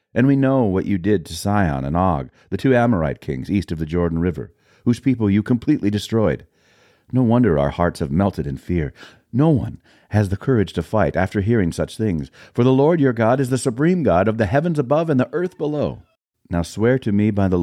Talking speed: 225 wpm